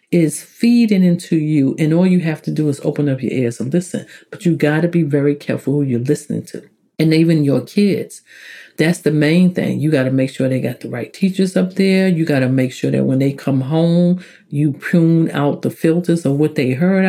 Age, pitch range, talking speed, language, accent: 50-69, 140-175 Hz, 235 wpm, English, American